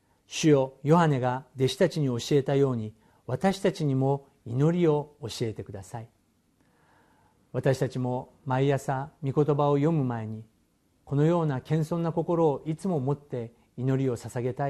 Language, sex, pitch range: Japanese, male, 115-145 Hz